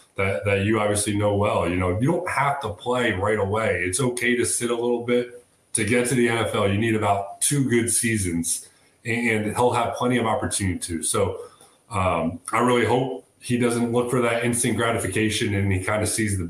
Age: 30-49